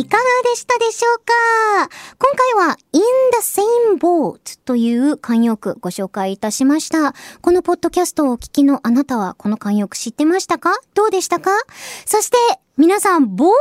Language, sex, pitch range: Japanese, male, 235-370 Hz